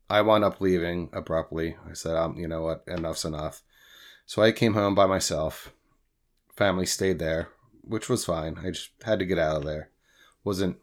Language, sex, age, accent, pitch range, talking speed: English, male, 30-49, American, 85-105 Hz, 190 wpm